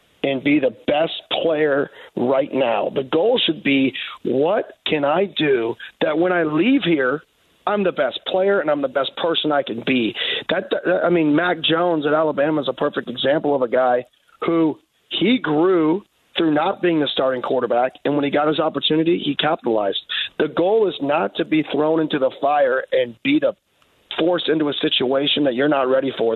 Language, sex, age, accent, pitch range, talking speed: English, male, 40-59, American, 150-215 Hz, 190 wpm